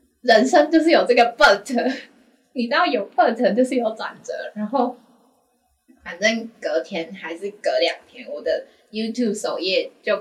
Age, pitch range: 10-29, 205-320 Hz